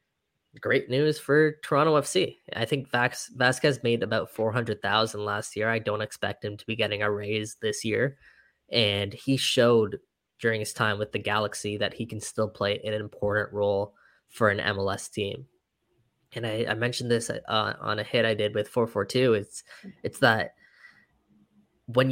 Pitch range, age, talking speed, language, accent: 105-125 Hz, 10-29, 180 wpm, English, American